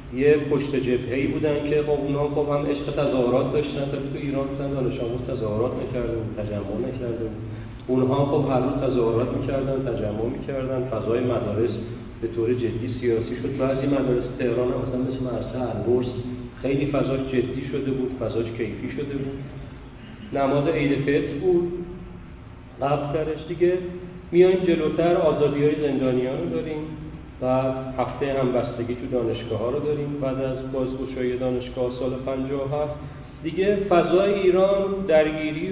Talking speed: 140 wpm